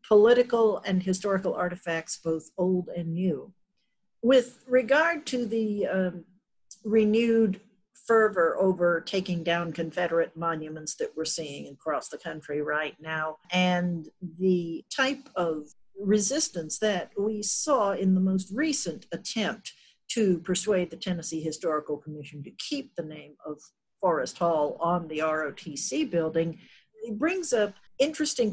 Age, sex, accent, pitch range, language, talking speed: 50-69, female, American, 170-220 Hz, English, 130 wpm